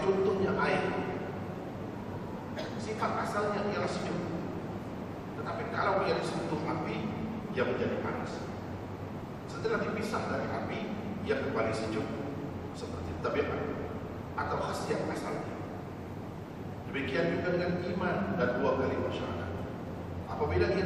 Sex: male